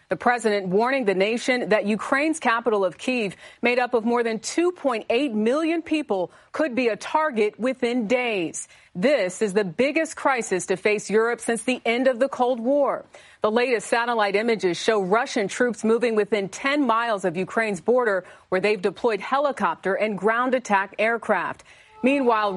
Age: 40-59